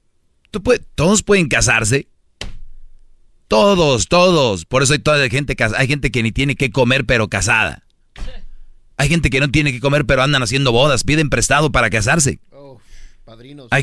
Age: 40-59